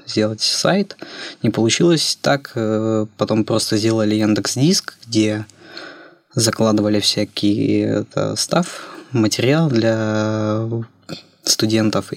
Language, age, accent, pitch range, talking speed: Russian, 20-39, native, 110-125 Hz, 90 wpm